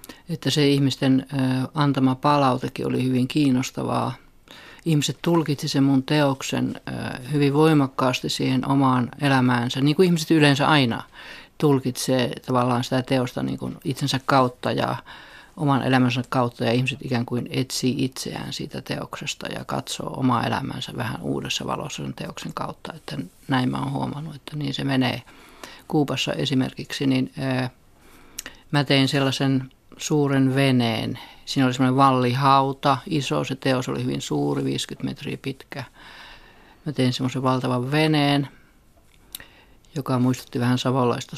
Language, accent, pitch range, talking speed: Finnish, native, 125-140 Hz, 130 wpm